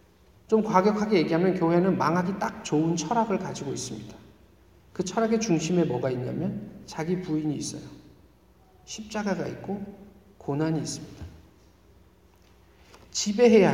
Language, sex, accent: Korean, male, native